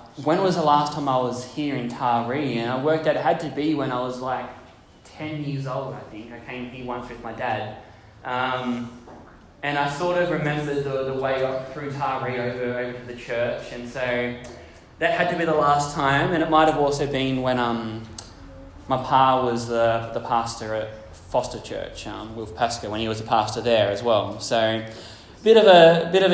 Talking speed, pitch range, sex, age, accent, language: 215 wpm, 115-145 Hz, male, 10-29, Australian, English